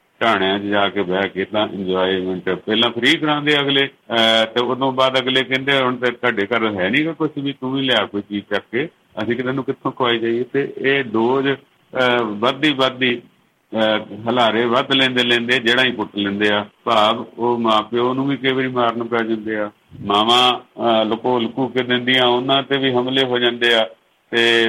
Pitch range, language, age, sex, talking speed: 100-125 Hz, Punjabi, 50-69, male, 175 wpm